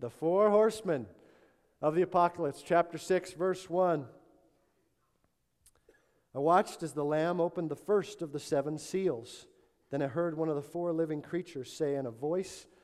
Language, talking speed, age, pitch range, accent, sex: English, 165 wpm, 40-59, 135-170 Hz, American, male